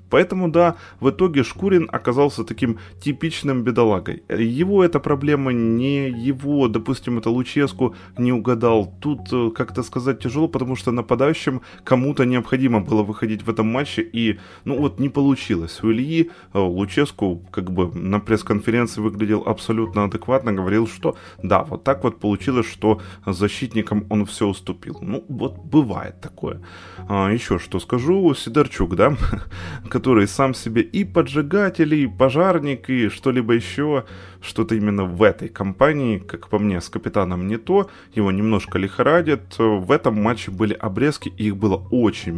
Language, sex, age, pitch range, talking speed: Ukrainian, male, 20-39, 100-130 Hz, 145 wpm